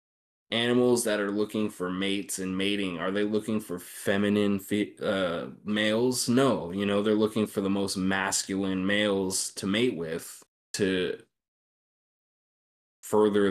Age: 20-39